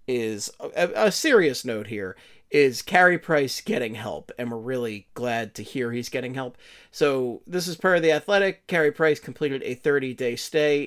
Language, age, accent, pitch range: English, 40-59, American, 120-160 Hz